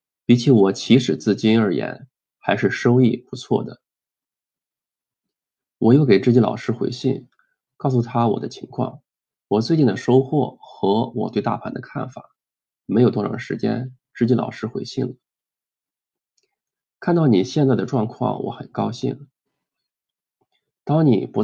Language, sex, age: Chinese, male, 20-39